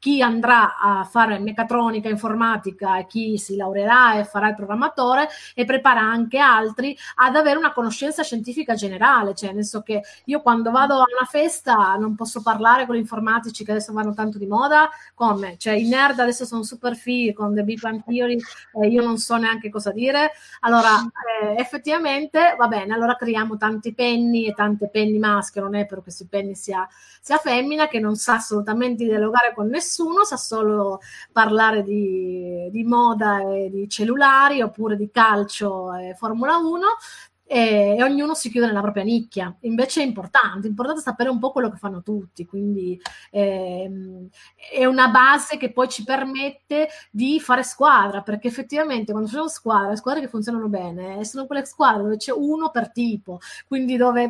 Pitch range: 210-255 Hz